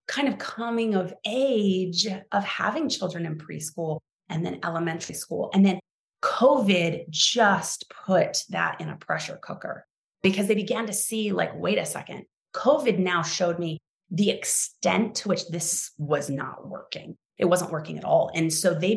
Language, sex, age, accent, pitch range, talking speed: English, female, 30-49, American, 185-255 Hz, 170 wpm